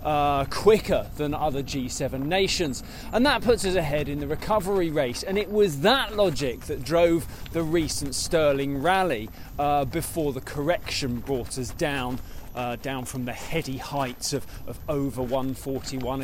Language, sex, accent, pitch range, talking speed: English, male, British, 140-185 Hz, 160 wpm